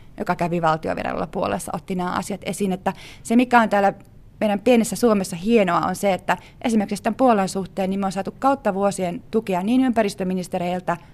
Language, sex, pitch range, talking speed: Finnish, female, 180-215 Hz, 180 wpm